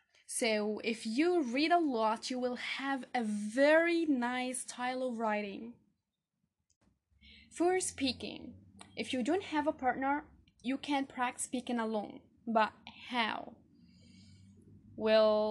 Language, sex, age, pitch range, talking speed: English, female, 10-29, 235-290 Hz, 120 wpm